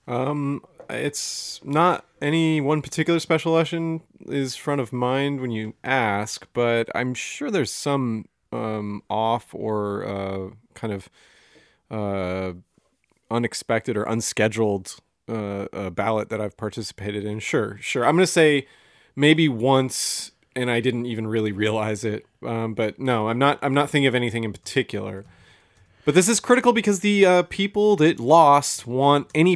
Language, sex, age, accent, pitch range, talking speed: English, male, 30-49, American, 110-145 Hz, 155 wpm